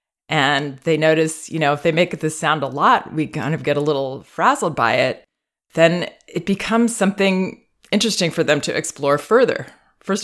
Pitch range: 145-180 Hz